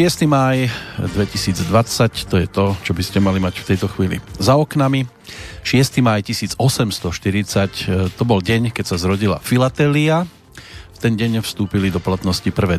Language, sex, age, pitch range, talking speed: Slovak, male, 40-59, 95-120 Hz, 155 wpm